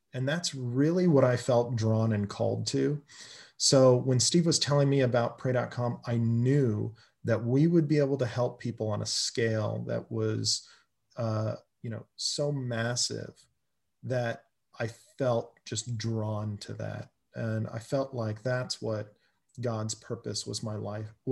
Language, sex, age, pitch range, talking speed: English, male, 40-59, 110-130 Hz, 160 wpm